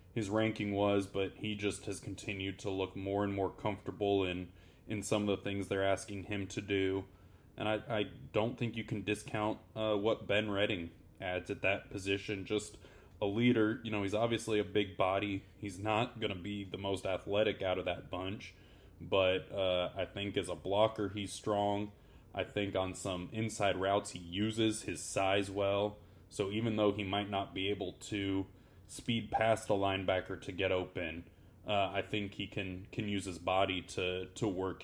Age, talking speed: 20-39, 190 wpm